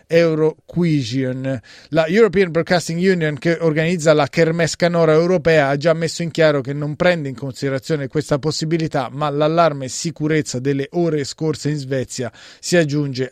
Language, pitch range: Italian, 135-165 Hz